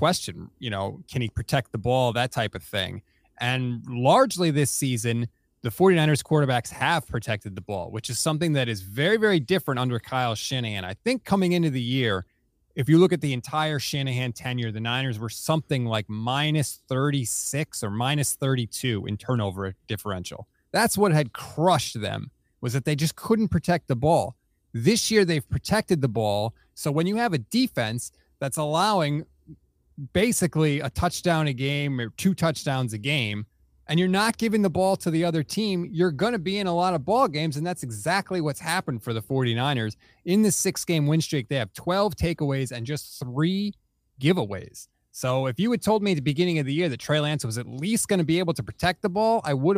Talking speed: 205 wpm